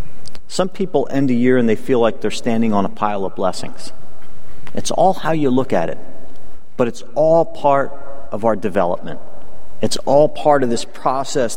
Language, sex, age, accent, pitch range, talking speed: English, male, 40-59, American, 125-160 Hz, 185 wpm